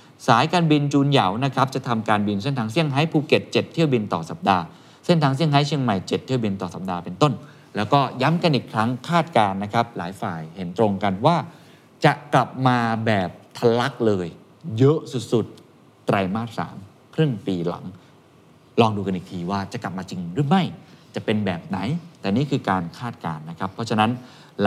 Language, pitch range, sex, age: Thai, 105-145 Hz, male, 20-39